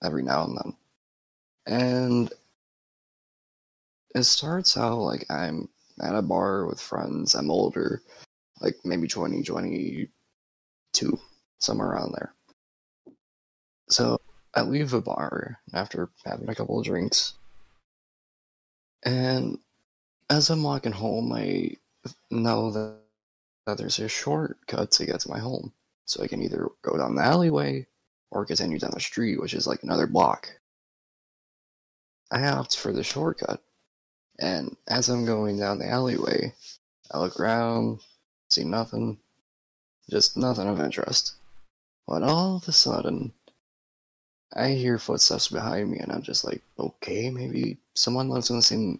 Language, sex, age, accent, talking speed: English, male, 20-39, American, 135 wpm